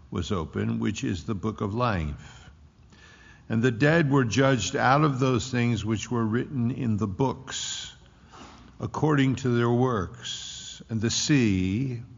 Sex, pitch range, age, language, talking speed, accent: male, 100-125 Hz, 50-69, English, 150 wpm, American